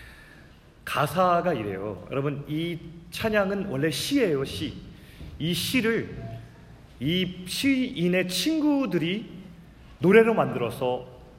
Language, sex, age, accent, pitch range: Korean, male, 30-49, native, 120-175 Hz